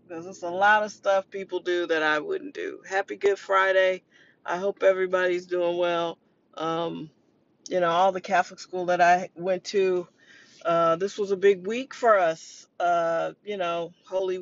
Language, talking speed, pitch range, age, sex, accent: English, 180 wpm, 165-190 Hz, 40-59, female, American